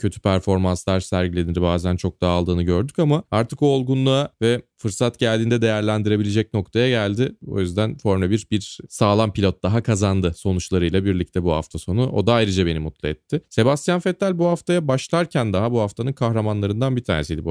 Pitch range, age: 90-110 Hz, 30-49